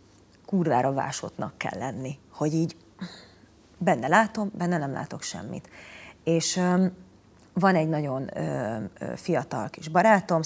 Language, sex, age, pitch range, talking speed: Hungarian, female, 30-49, 140-175 Hz, 110 wpm